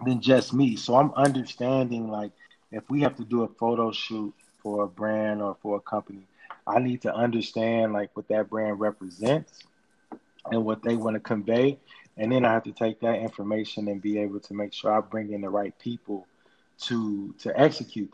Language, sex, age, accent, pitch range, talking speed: English, male, 20-39, American, 105-120 Hz, 200 wpm